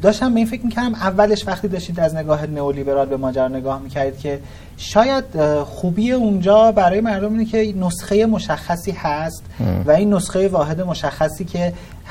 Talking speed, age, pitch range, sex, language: 155 wpm, 30-49, 135-215 Hz, male, Persian